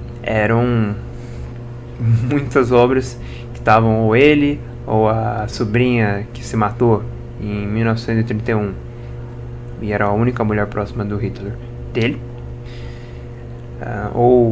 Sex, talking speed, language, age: male, 105 wpm, Portuguese, 20-39